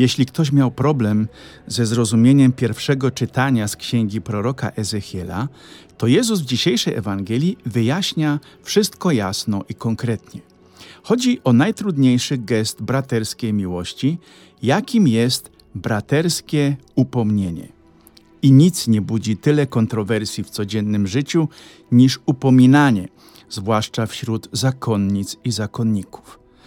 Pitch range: 110-145 Hz